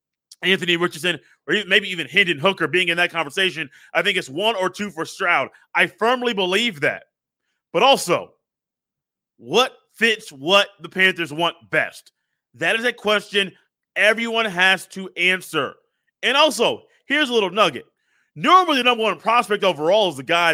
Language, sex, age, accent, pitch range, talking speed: English, male, 30-49, American, 170-215 Hz, 160 wpm